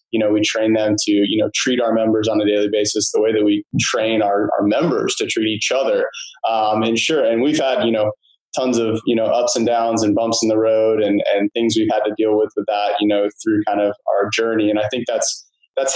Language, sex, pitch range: English, male, 105-120 Hz